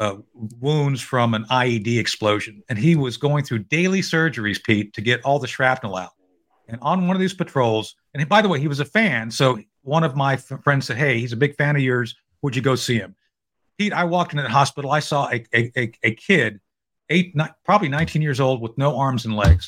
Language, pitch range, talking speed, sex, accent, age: English, 115-150 Hz, 240 wpm, male, American, 50-69